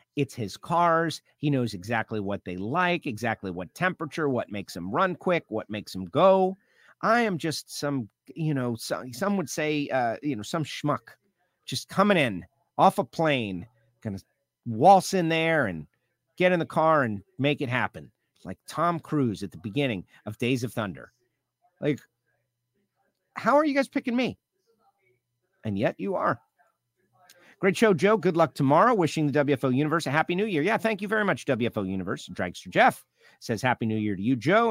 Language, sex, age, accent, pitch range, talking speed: English, male, 50-69, American, 120-180 Hz, 185 wpm